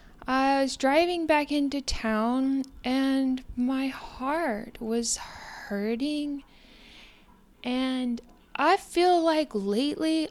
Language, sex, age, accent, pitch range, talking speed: English, female, 10-29, American, 245-305 Hz, 95 wpm